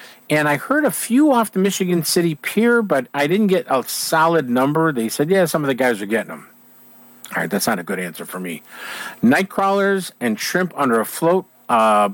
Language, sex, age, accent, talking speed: English, male, 50-69, American, 215 wpm